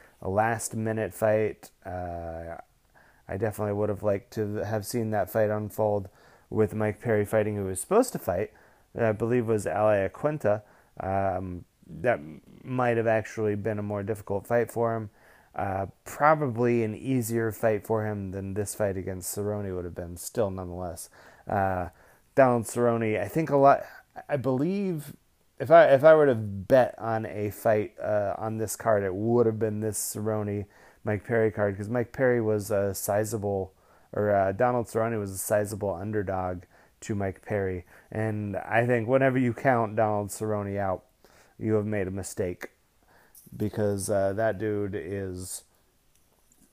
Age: 30-49